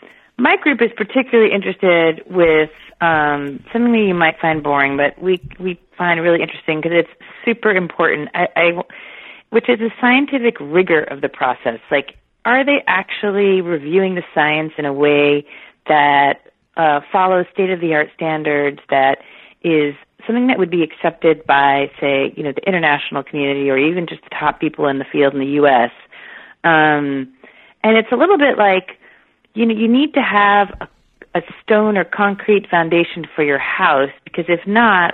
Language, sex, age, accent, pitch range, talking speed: English, female, 30-49, American, 155-205 Hz, 165 wpm